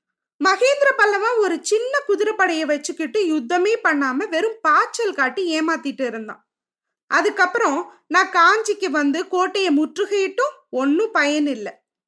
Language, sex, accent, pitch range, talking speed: Tamil, female, native, 290-385 Hz, 110 wpm